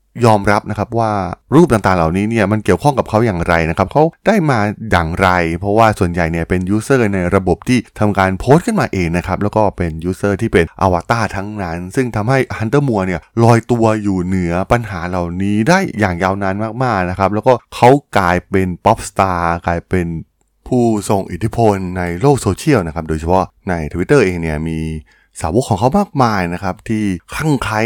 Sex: male